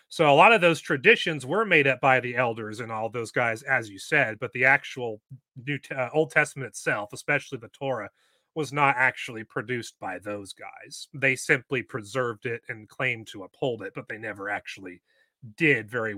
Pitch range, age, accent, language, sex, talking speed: 120-145 Hz, 30-49, American, English, male, 195 wpm